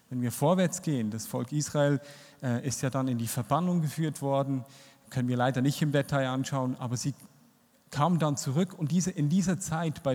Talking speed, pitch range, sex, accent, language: 190 wpm, 135-165 Hz, male, German, German